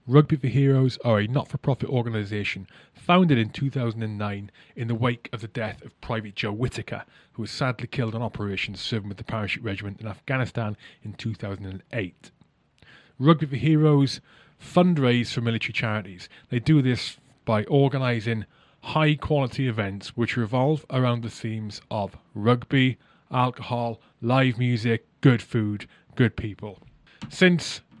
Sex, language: male, English